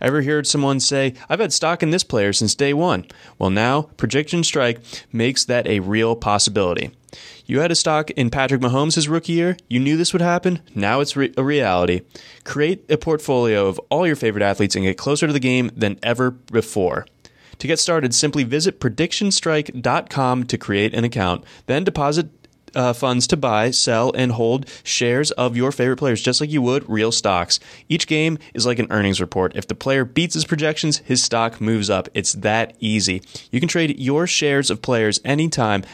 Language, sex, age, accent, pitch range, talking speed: English, male, 20-39, American, 105-150 Hz, 190 wpm